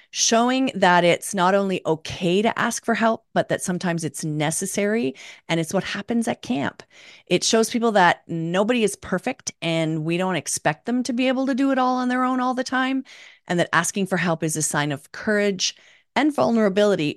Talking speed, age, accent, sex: 205 wpm, 40-59, American, female